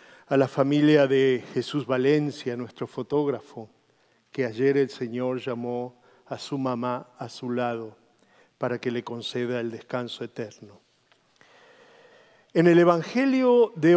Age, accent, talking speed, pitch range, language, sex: 50-69, Argentinian, 130 wpm, 130-210 Hz, Spanish, male